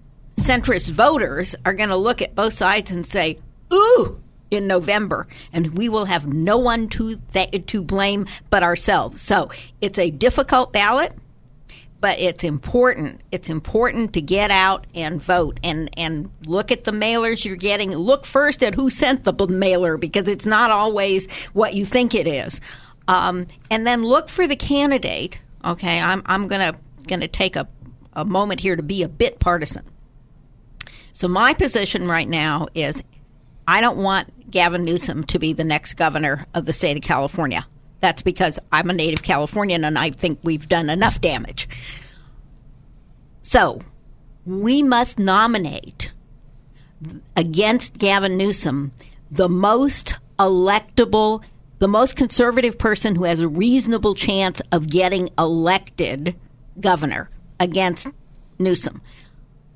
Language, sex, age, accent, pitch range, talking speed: English, female, 60-79, American, 160-215 Hz, 150 wpm